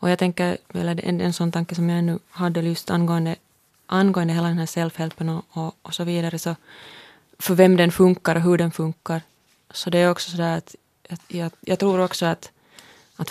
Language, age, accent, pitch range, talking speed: Finnish, 20-39, native, 165-185 Hz, 210 wpm